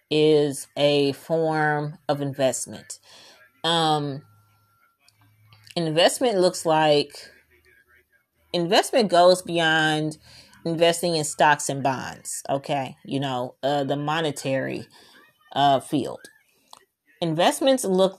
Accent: American